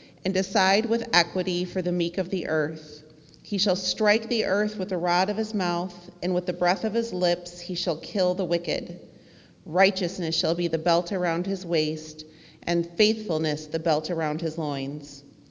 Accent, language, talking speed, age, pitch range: American, English, 185 wpm, 40-59, 160-195 Hz